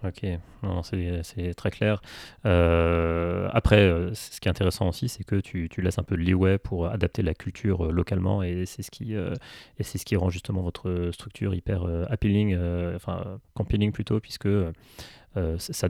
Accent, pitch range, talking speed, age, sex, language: French, 90-105 Hz, 175 wpm, 30-49, male, English